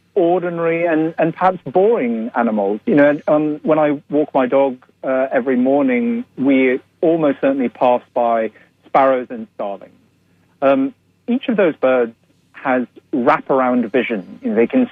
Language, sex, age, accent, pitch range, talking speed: English, male, 40-59, British, 130-180 Hz, 140 wpm